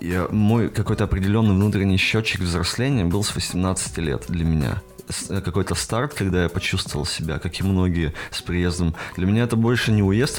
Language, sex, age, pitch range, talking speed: Russian, male, 30-49, 80-100 Hz, 170 wpm